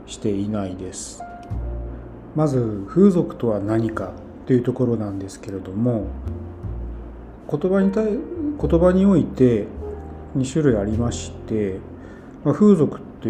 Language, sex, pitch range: Japanese, male, 100-145 Hz